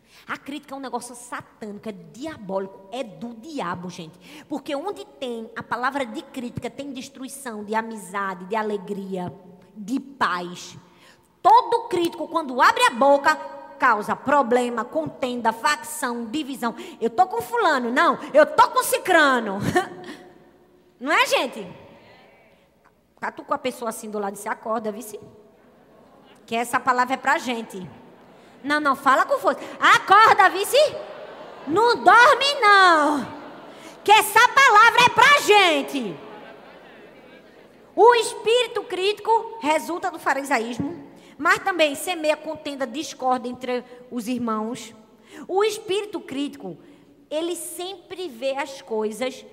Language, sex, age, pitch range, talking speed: Portuguese, female, 20-39, 230-335 Hz, 125 wpm